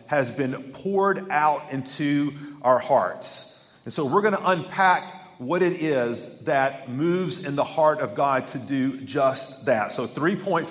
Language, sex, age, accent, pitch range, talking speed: English, male, 40-59, American, 135-185 Hz, 170 wpm